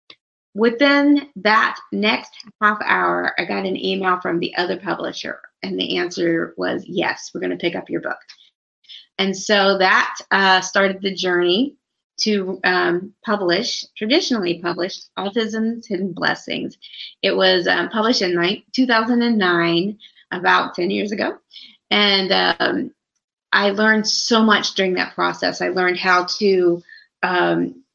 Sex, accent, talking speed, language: female, American, 135 wpm, English